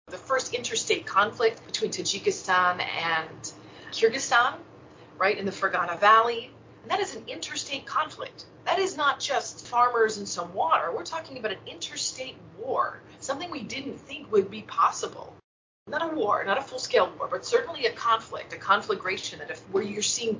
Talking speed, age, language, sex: 170 wpm, 30-49, English, female